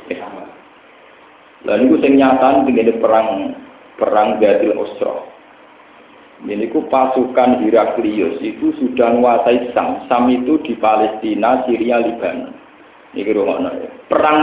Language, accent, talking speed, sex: Indonesian, native, 90 wpm, male